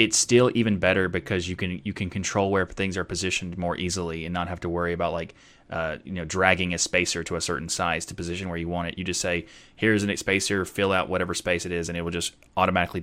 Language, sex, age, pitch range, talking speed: English, male, 20-39, 85-105 Hz, 260 wpm